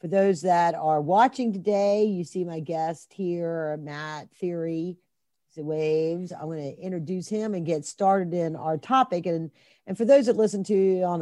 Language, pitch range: English, 155-195 Hz